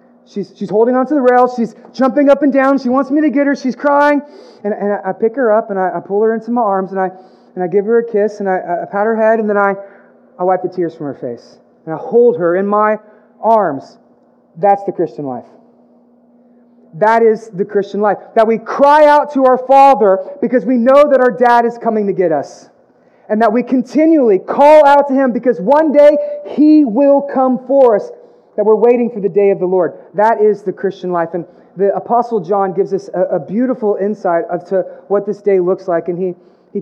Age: 30-49